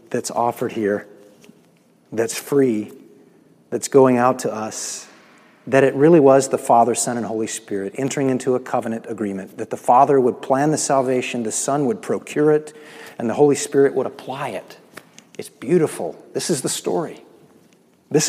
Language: English